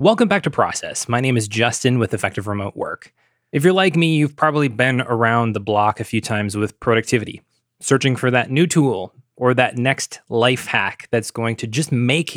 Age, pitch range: 20-39, 115-165 Hz